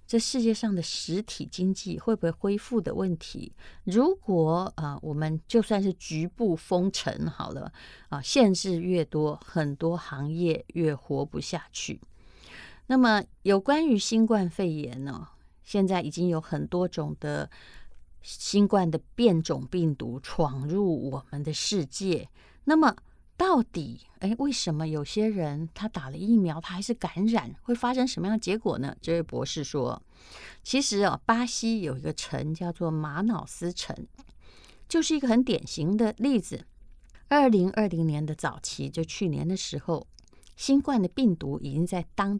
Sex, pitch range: female, 160-225 Hz